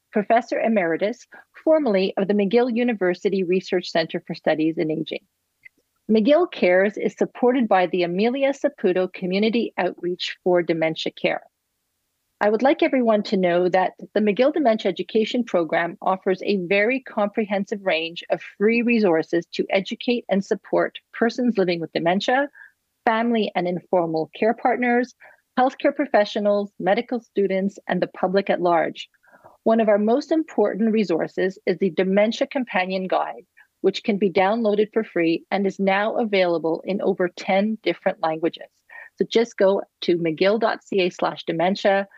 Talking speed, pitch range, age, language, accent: 145 wpm, 180-230 Hz, 40-59, English, American